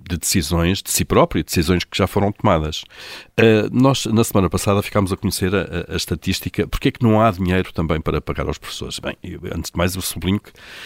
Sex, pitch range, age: male, 85-105 Hz, 50-69